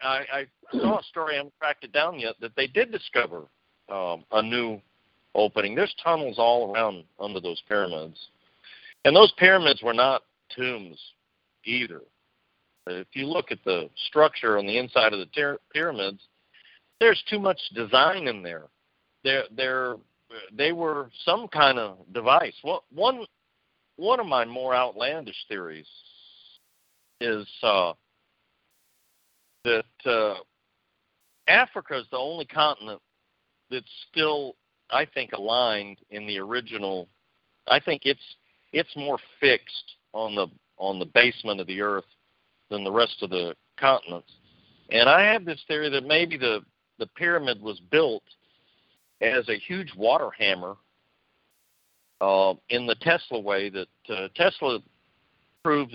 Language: English